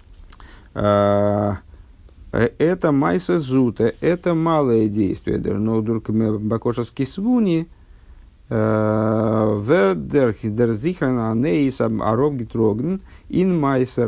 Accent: native